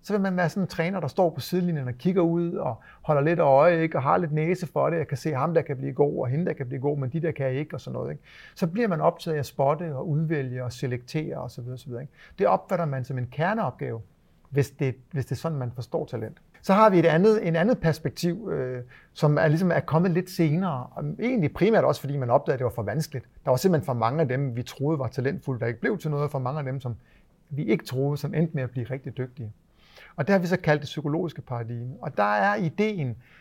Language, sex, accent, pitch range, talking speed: Danish, male, native, 130-165 Hz, 270 wpm